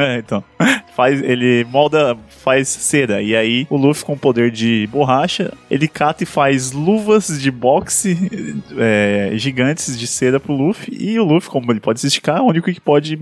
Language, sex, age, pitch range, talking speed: Portuguese, male, 20-39, 105-135 Hz, 185 wpm